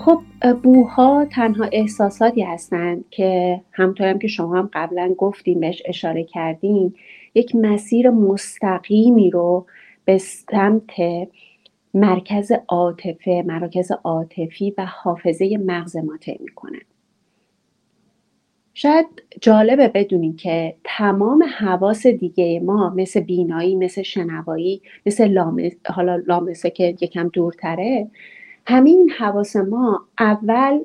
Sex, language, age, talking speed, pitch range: female, English, 30-49, 105 wpm, 180-235 Hz